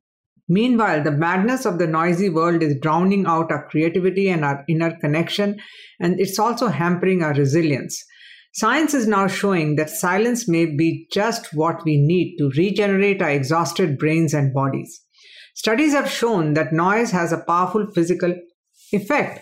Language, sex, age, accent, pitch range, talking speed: English, female, 50-69, Indian, 160-205 Hz, 160 wpm